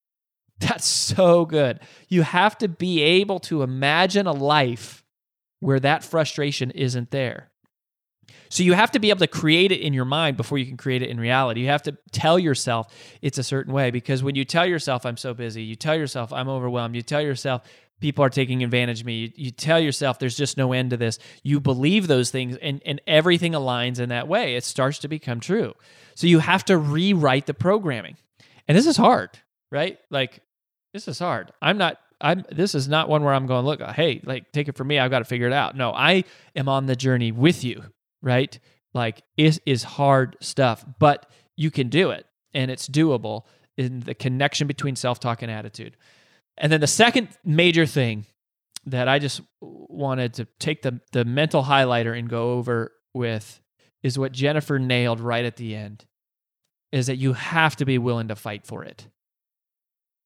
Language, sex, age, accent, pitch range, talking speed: English, male, 20-39, American, 125-155 Hz, 200 wpm